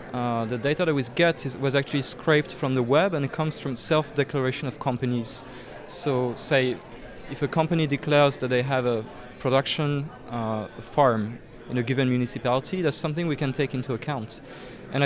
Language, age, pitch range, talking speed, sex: English, 20-39, 130-155 Hz, 175 wpm, male